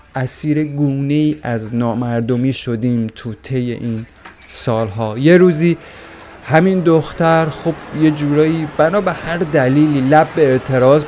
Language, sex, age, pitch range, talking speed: Persian, male, 30-49, 125-160 Hz, 120 wpm